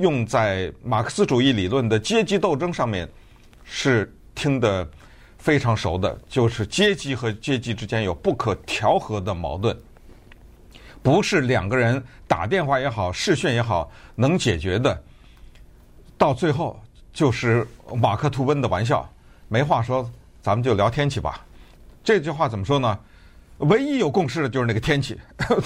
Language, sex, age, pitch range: Chinese, male, 50-69, 100-160 Hz